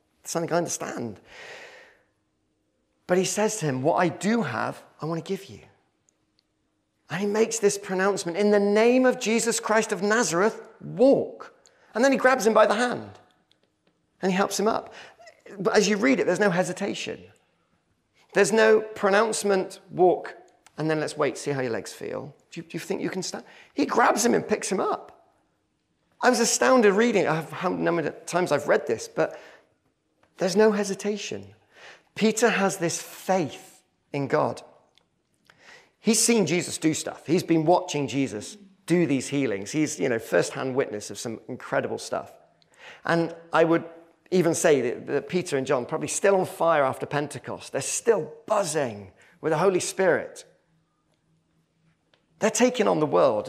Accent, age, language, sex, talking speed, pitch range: British, 40-59, English, male, 170 wpm, 160-215 Hz